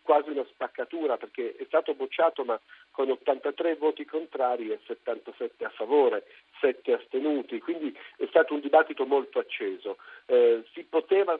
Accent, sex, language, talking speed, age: native, male, Italian, 145 wpm, 50-69